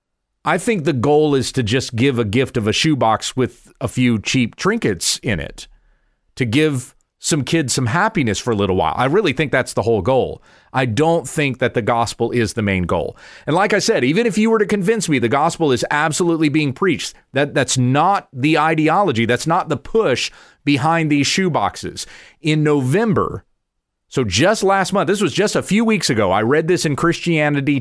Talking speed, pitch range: 200 wpm, 120-175 Hz